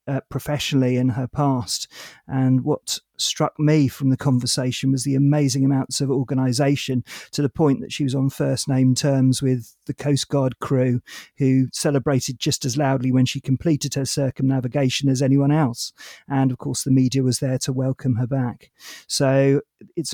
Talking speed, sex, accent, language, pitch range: 175 wpm, male, British, English, 130-145 Hz